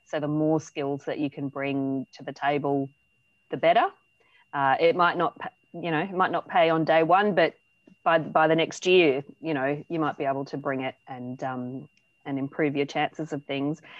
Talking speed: 210 wpm